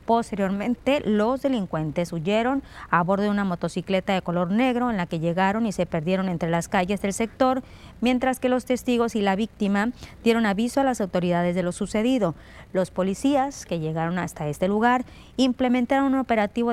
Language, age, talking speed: Spanish, 30-49, 175 wpm